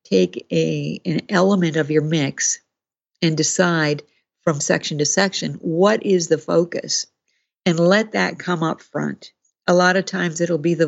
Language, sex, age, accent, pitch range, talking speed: English, female, 50-69, American, 160-195 Hz, 165 wpm